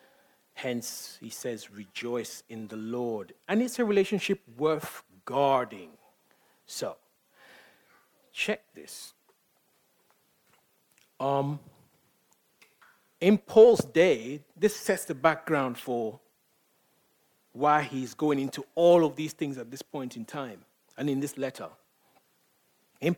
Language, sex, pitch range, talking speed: English, male, 135-185 Hz, 110 wpm